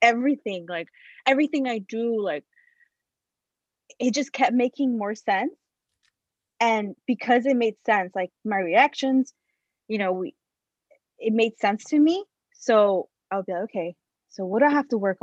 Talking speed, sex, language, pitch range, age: 160 wpm, female, English, 190-255 Hz, 20-39